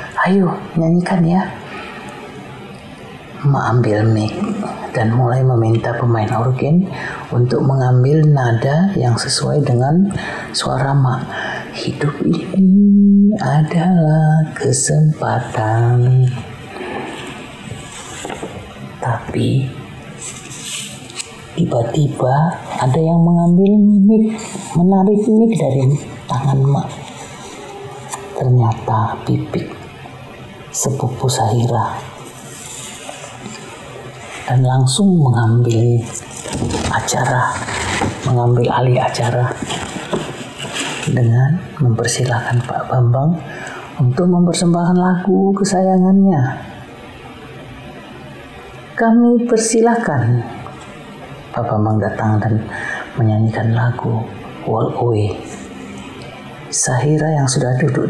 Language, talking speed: Indonesian, 70 wpm